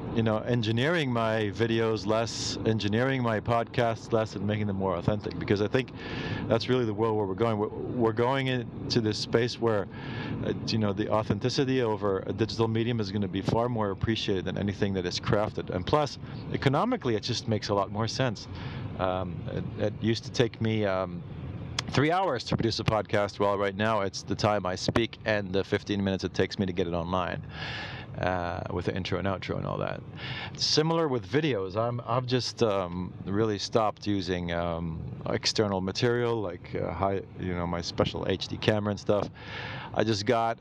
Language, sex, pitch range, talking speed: English, male, 95-120 Hz, 190 wpm